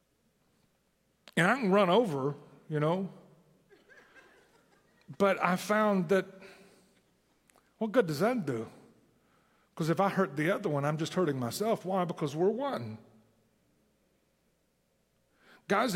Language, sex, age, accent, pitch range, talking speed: English, male, 50-69, American, 155-220 Hz, 120 wpm